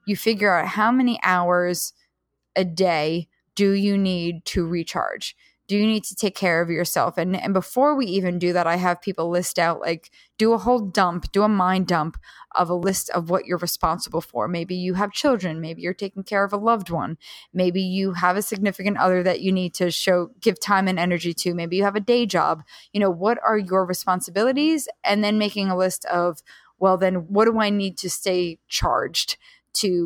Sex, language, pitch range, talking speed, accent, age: female, English, 175-205 Hz, 210 wpm, American, 20-39